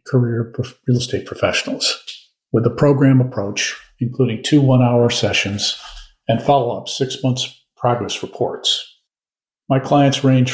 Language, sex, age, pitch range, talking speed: English, male, 50-69, 115-135 Hz, 115 wpm